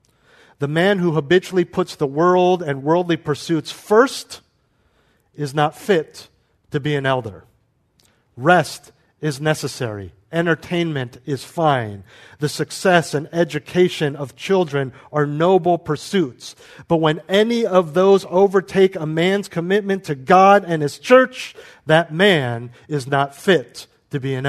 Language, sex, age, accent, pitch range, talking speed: English, male, 50-69, American, 125-165 Hz, 135 wpm